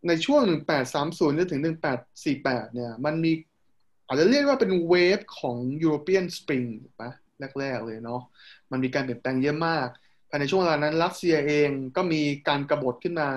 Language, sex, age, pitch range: Thai, male, 20-39, 130-170 Hz